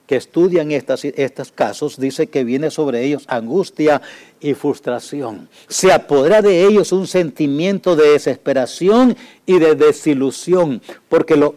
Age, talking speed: 60-79, 135 wpm